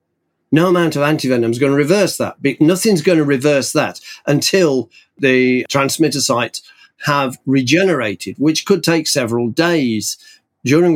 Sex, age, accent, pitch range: male, 50-69, British, 120-155 Hz